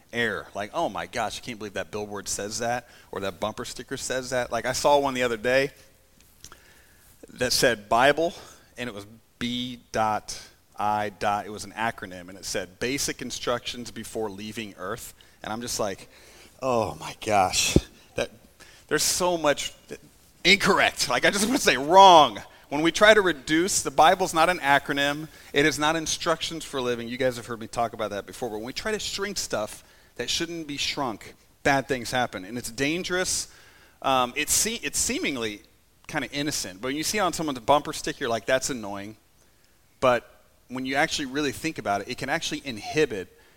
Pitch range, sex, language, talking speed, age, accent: 105-145 Hz, male, English, 195 wpm, 40-59, American